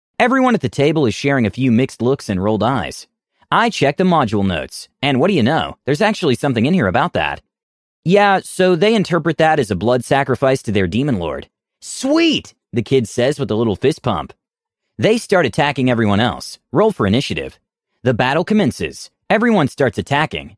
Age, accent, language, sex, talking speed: 30-49, American, English, male, 190 wpm